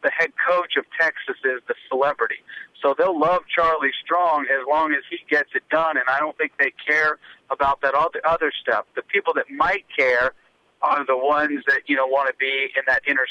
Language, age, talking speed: English, 50-69, 210 wpm